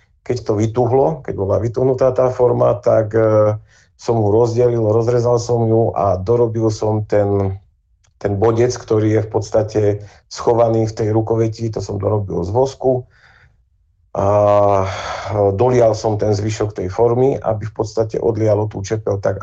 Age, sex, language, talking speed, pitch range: 40-59, male, Slovak, 150 wpm, 100-115 Hz